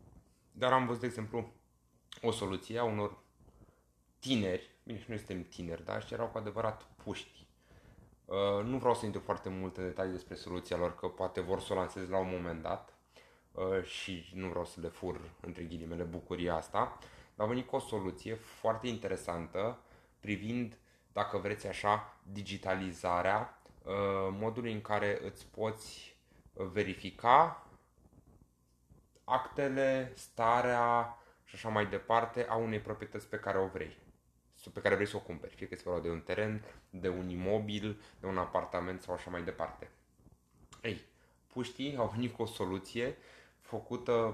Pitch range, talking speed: 90-115 Hz, 155 wpm